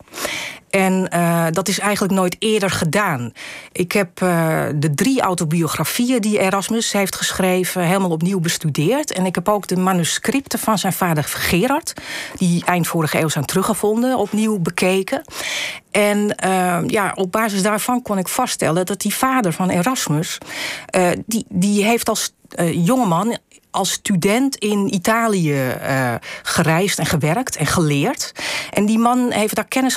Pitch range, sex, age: 165-220 Hz, female, 40-59